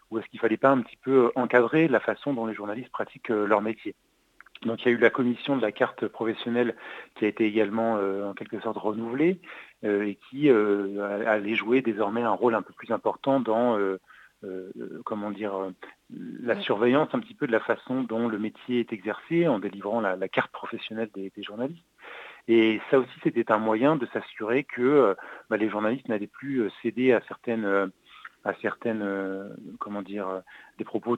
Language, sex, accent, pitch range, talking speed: French, male, French, 105-125 Hz, 195 wpm